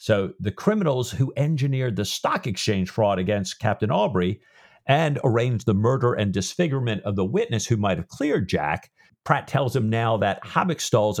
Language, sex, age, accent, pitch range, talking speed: English, male, 50-69, American, 100-135 Hz, 170 wpm